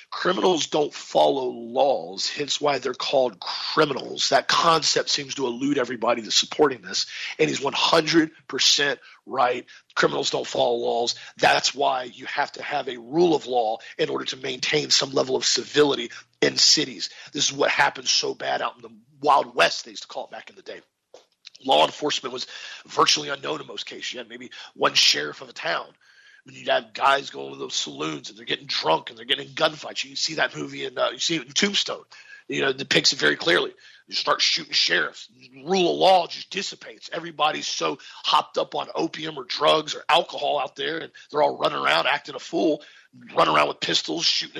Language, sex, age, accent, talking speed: English, male, 40-59, American, 200 wpm